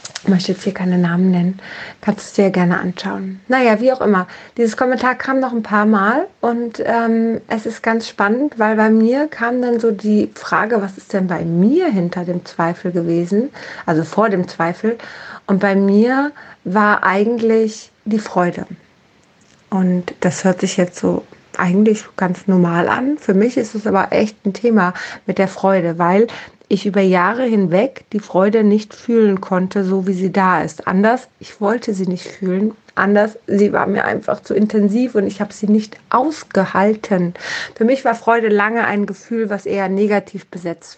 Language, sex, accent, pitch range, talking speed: German, female, German, 190-230 Hz, 180 wpm